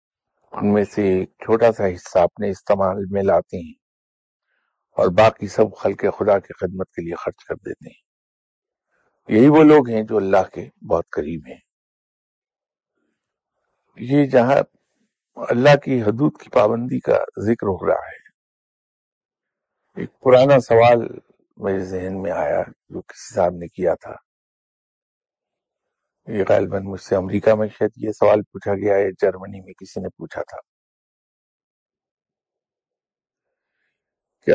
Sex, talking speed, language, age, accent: male, 135 wpm, English, 50-69, Indian